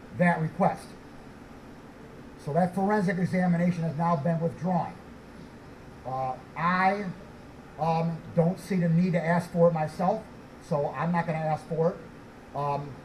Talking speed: 145 wpm